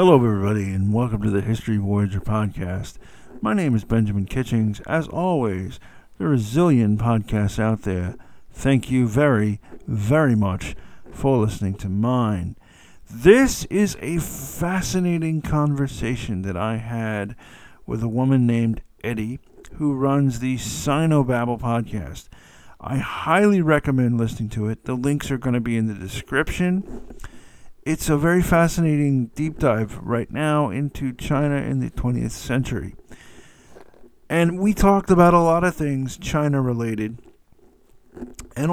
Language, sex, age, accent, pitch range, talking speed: English, male, 50-69, American, 110-150 Hz, 140 wpm